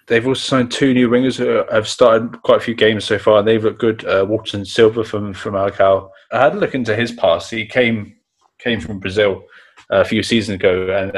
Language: English